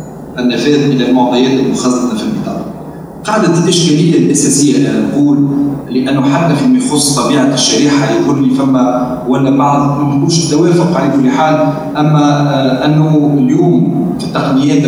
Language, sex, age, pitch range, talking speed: Arabic, male, 40-59, 130-165 Hz, 130 wpm